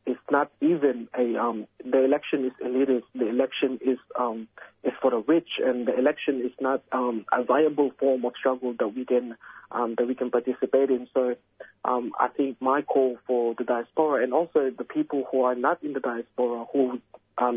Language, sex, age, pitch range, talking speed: English, male, 30-49, 125-140 Hz, 200 wpm